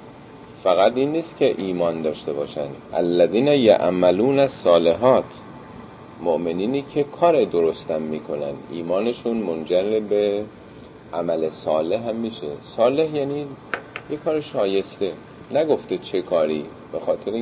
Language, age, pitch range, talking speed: Persian, 40-59, 80-130 Hz, 115 wpm